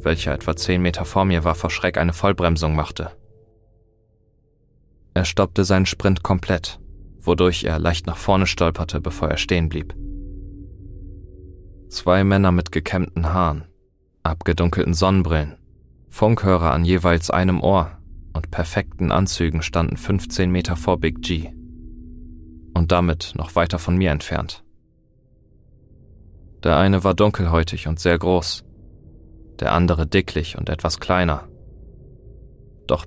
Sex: male